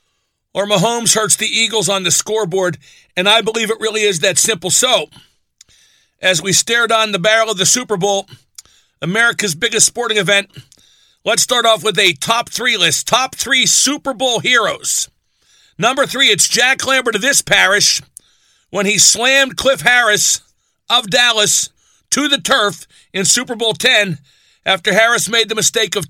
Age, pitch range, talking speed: 50-69, 195-240 Hz, 165 wpm